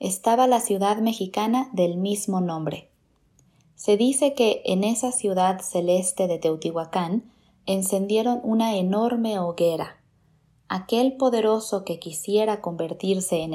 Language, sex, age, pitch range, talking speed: Spanish, female, 20-39, 180-225 Hz, 115 wpm